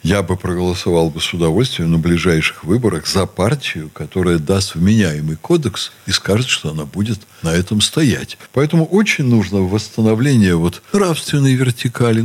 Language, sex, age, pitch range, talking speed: Russian, male, 60-79, 100-135 Hz, 145 wpm